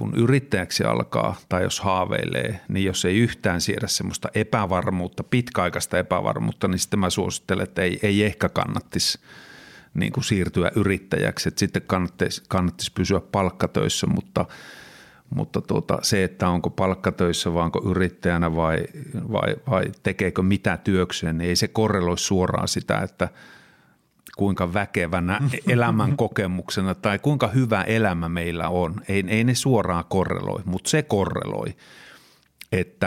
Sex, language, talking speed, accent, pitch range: male, Finnish, 135 wpm, native, 90-105 Hz